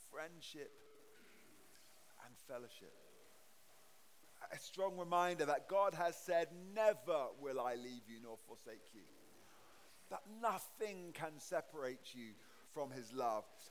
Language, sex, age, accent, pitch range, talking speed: English, male, 40-59, British, 150-200 Hz, 115 wpm